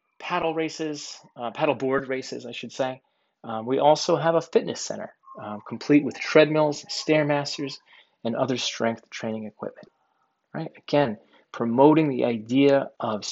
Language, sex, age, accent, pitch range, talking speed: English, male, 30-49, American, 115-145 Hz, 145 wpm